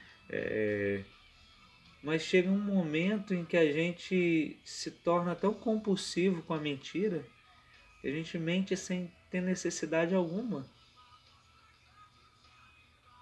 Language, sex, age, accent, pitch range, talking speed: Portuguese, male, 20-39, Brazilian, 130-175 Hz, 110 wpm